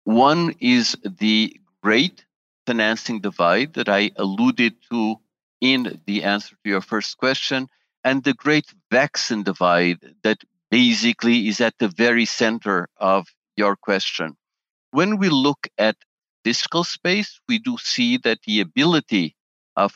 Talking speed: 135 wpm